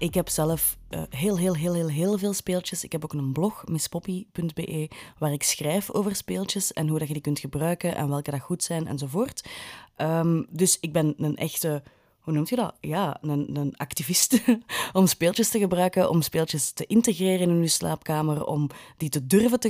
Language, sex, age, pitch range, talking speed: Dutch, female, 20-39, 150-205 Hz, 190 wpm